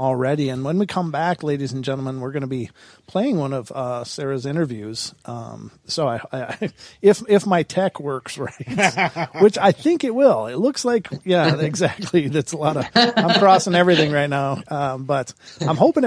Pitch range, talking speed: 130-170 Hz, 185 wpm